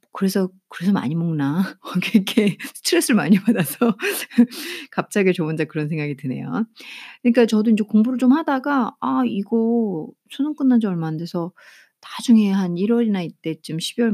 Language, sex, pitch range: Korean, female, 175-240 Hz